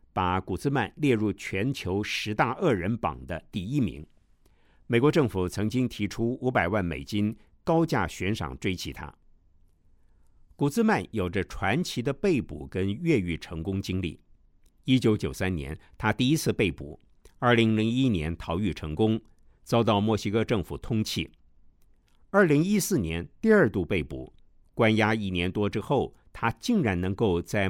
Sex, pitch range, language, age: male, 85-125 Hz, Chinese, 50-69